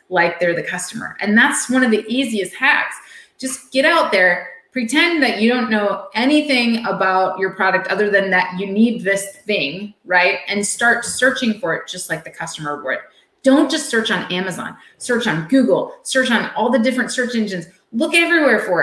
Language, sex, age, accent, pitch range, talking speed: English, female, 30-49, American, 180-250 Hz, 190 wpm